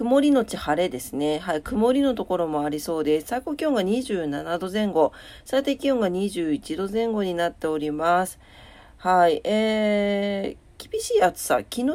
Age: 40-59